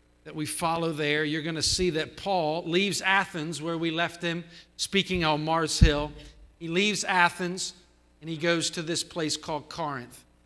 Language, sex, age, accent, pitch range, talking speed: English, male, 50-69, American, 155-190 Hz, 180 wpm